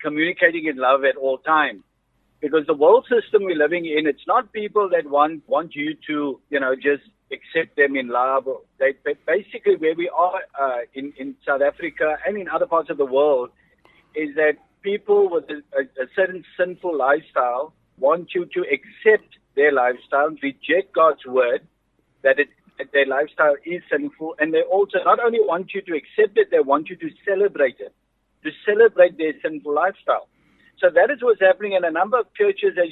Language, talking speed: English, 190 wpm